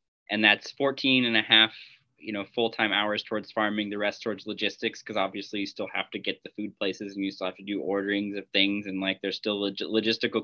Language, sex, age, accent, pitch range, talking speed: English, male, 20-39, American, 100-115 Hz, 235 wpm